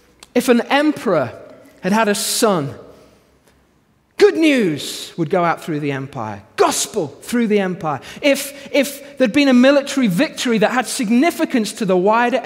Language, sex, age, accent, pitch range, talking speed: English, male, 30-49, British, 185-275 Hz, 155 wpm